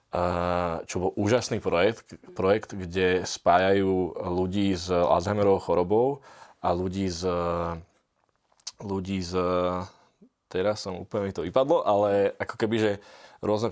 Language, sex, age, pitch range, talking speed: Slovak, male, 20-39, 90-100 Hz, 125 wpm